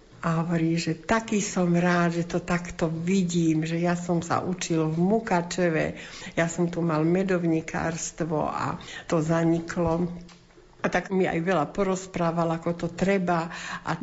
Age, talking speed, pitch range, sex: 60-79, 150 wpm, 165-185 Hz, female